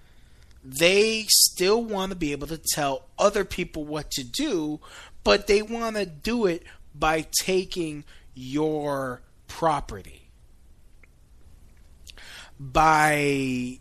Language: English